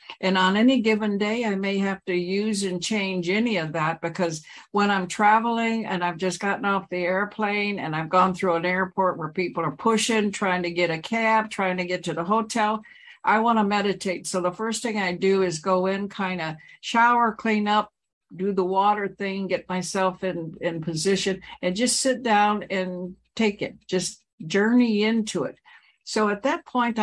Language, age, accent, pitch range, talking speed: English, 60-79, American, 180-225 Hz, 200 wpm